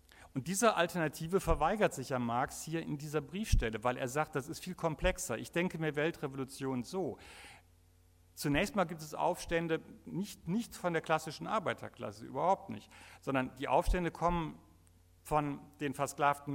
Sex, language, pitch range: male, German, 125-160 Hz